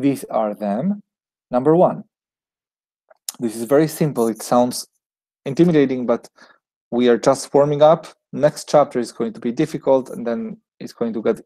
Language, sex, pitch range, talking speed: English, male, 115-155 Hz, 160 wpm